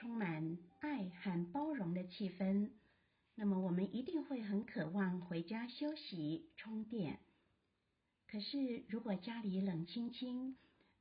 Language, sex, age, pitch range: Chinese, female, 50-69, 190-255 Hz